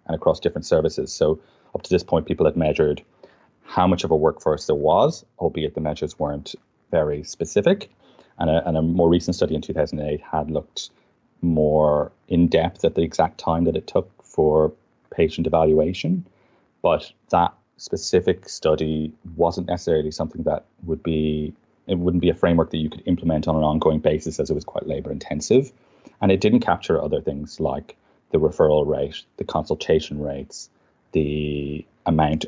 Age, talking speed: 30-49, 170 wpm